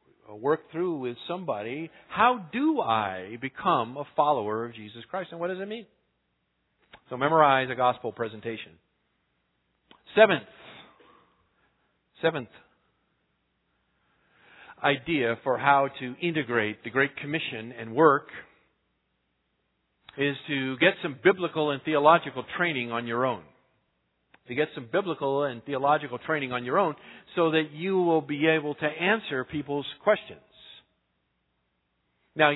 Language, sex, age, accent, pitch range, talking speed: English, male, 50-69, American, 125-170 Hz, 125 wpm